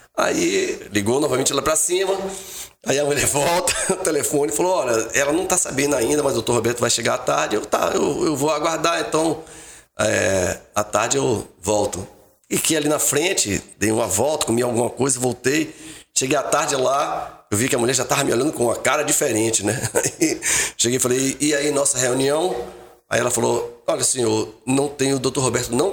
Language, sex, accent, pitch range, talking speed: Portuguese, male, Brazilian, 125-160 Hz, 200 wpm